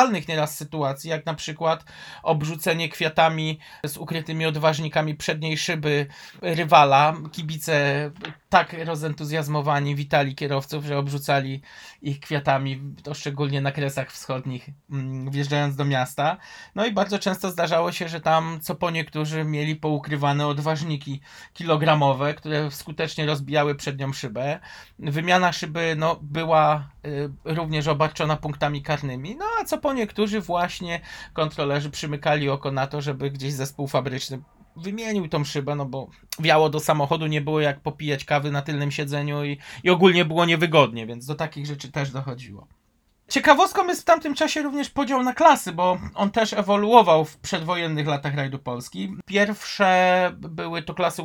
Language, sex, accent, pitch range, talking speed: Polish, male, native, 145-170 Hz, 145 wpm